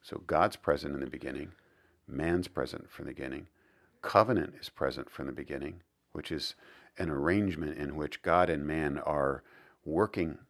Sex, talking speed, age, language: male, 160 wpm, 50-69, English